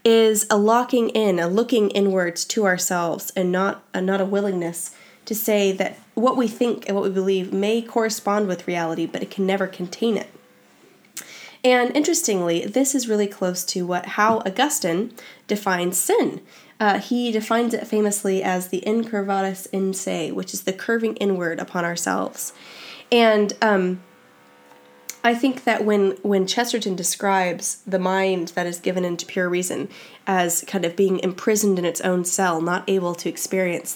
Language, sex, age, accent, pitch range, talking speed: English, female, 10-29, American, 180-220 Hz, 165 wpm